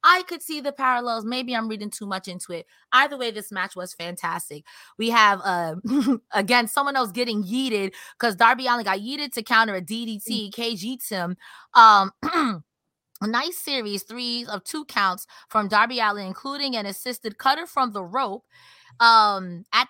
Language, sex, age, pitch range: English, female, 20-39, 210-280 Hz